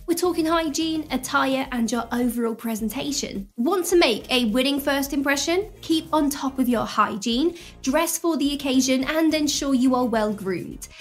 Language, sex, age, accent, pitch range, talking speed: English, female, 20-39, British, 235-300 Hz, 170 wpm